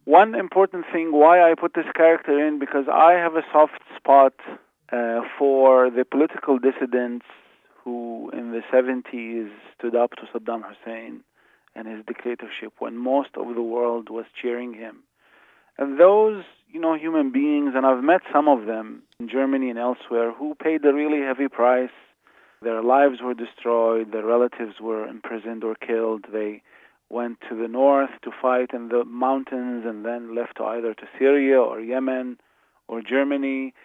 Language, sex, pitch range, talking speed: English, male, 120-150 Hz, 165 wpm